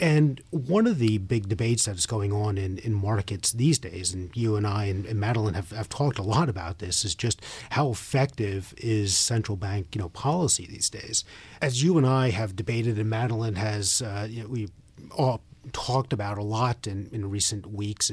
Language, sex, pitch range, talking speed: English, male, 100-125 Hz, 210 wpm